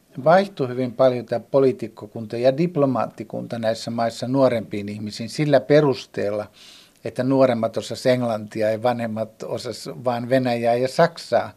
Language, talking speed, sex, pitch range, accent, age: Finnish, 120 wpm, male, 115-145 Hz, native, 50-69